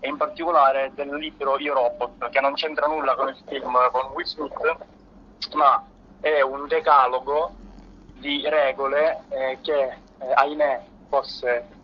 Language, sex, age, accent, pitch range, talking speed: Italian, male, 20-39, native, 130-150 Hz, 130 wpm